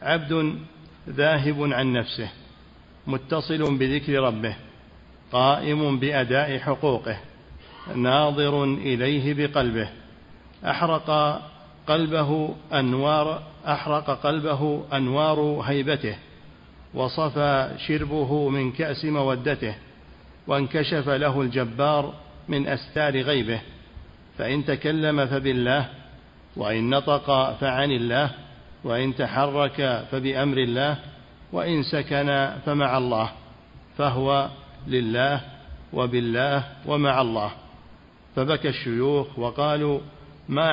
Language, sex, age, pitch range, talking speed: Arabic, male, 50-69, 130-150 Hz, 80 wpm